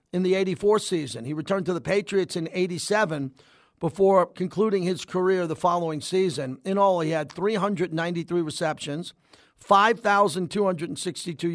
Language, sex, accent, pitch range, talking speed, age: English, male, American, 155-205 Hz, 130 wpm, 50-69